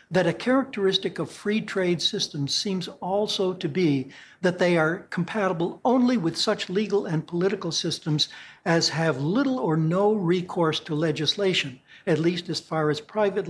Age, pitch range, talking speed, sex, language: 60-79, 150-185 Hz, 160 wpm, male, English